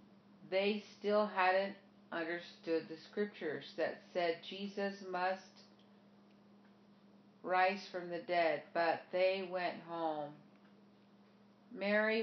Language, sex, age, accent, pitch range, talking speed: English, female, 50-69, American, 170-205 Hz, 95 wpm